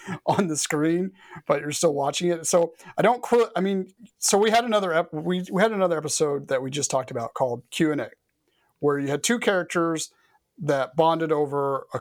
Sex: male